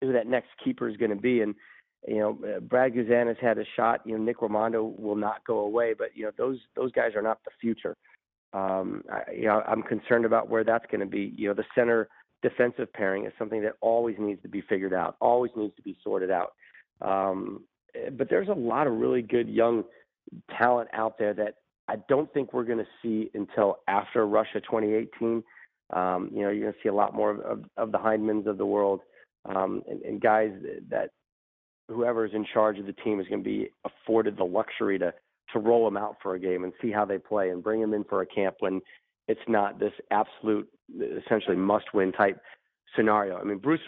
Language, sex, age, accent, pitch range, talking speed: English, male, 40-59, American, 100-115 Hz, 220 wpm